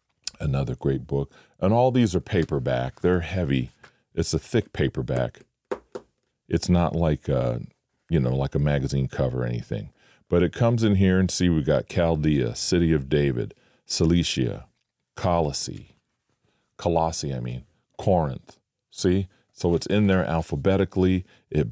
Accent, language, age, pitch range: American, English, 40-59, 75-95 Hz